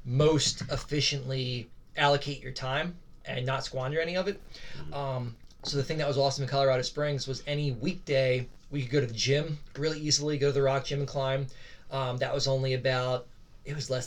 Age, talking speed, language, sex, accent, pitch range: 20-39, 200 wpm, English, male, American, 125-140 Hz